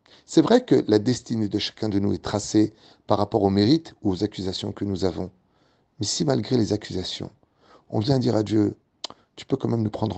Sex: male